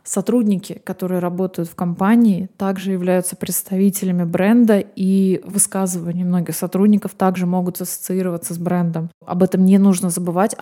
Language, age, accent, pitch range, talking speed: Russian, 20-39, native, 180-205 Hz, 130 wpm